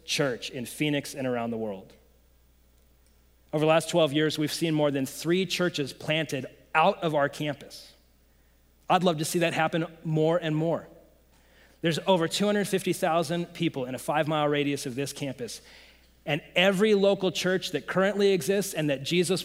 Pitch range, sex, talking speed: 140-175 Hz, male, 165 wpm